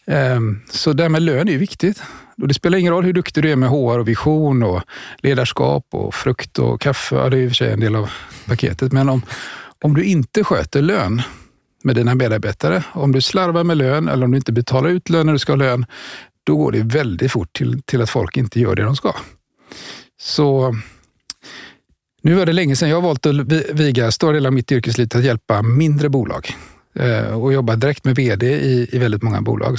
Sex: male